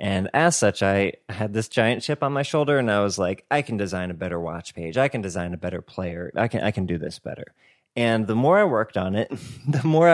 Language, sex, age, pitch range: English, male, 20-39, 95-120 Hz